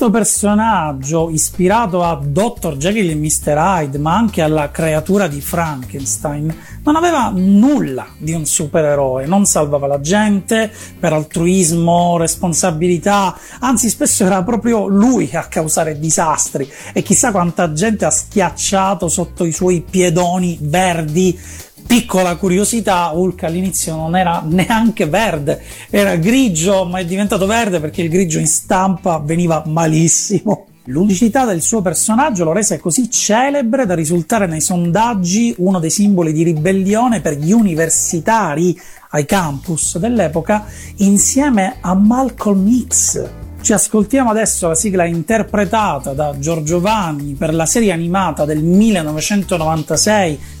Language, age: Italian, 40-59